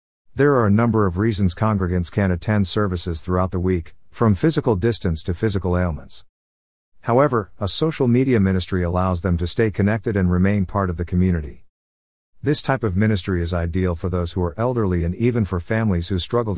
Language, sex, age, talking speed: English, male, 50-69, 190 wpm